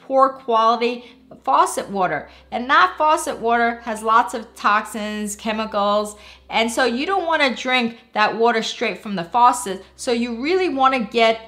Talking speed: 165 wpm